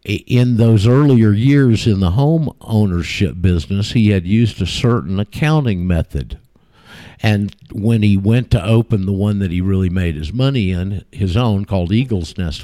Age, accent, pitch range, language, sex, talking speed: 50-69, American, 95-125 Hz, English, male, 170 wpm